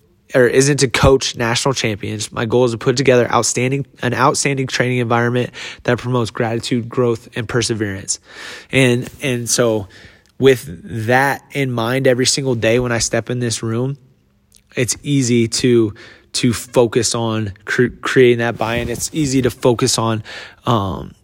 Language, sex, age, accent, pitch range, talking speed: English, male, 20-39, American, 115-135 Hz, 155 wpm